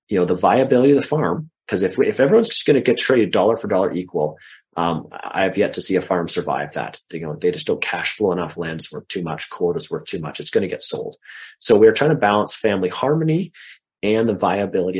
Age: 30-49